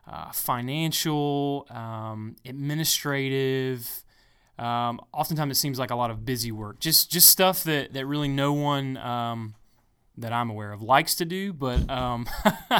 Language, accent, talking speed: English, American, 150 wpm